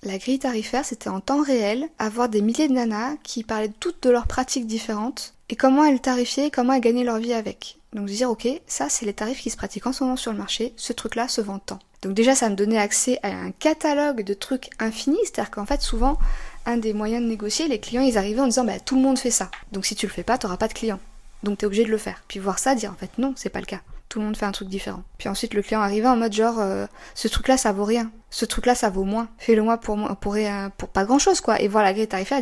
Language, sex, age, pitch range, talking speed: French, female, 20-39, 210-255 Hz, 285 wpm